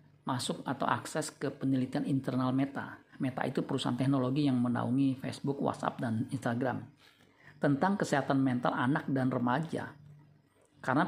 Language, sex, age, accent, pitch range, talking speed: Indonesian, male, 50-69, native, 130-145 Hz, 130 wpm